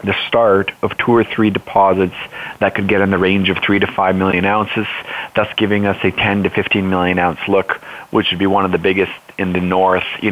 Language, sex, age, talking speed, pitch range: English, male, 30-49, 235 wpm, 95-105 Hz